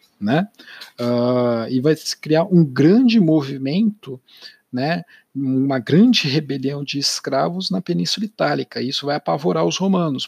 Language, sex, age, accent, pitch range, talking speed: Portuguese, male, 50-69, Brazilian, 120-170 Hz, 135 wpm